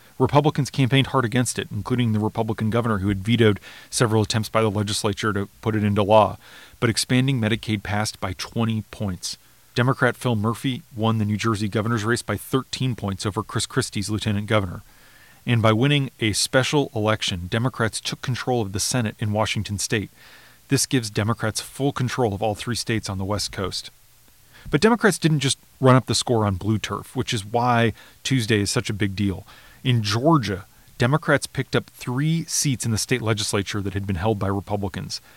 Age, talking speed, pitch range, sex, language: 30-49, 190 wpm, 105-125 Hz, male, English